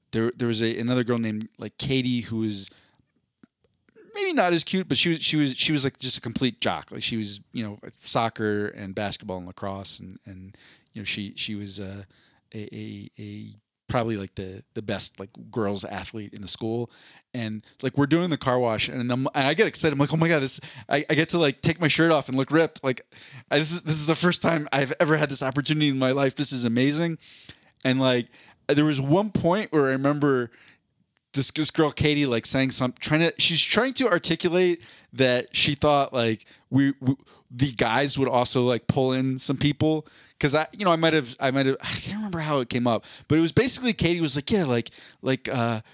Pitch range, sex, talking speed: 115-155 Hz, male, 225 wpm